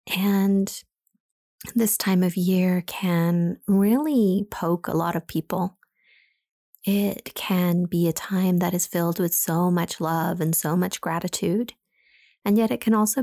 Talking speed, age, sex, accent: 150 wpm, 30-49, female, American